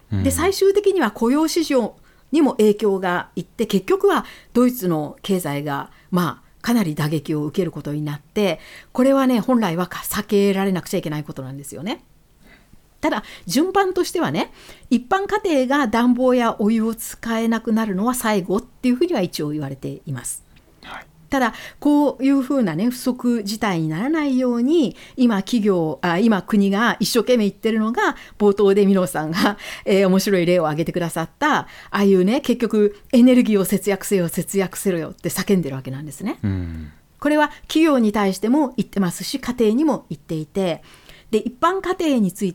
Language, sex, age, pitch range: Japanese, female, 60-79, 180-255 Hz